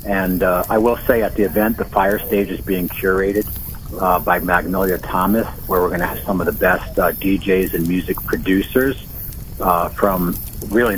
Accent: American